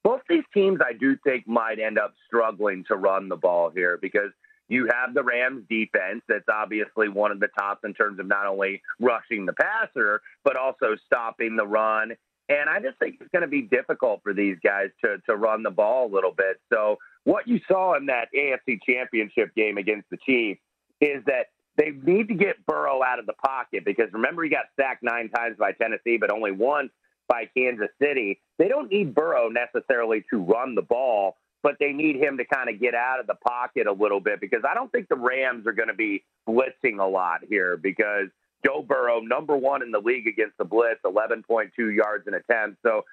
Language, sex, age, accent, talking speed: English, male, 40-59, American, 210 wpm